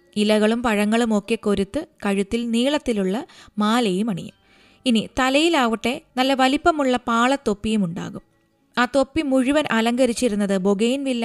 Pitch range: 200-255 Hz